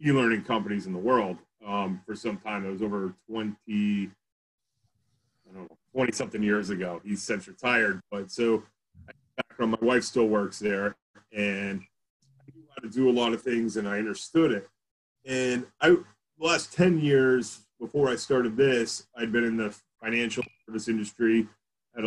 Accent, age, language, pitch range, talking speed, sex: American, 30-49, English, 105-125 Hz, 165 wpm, male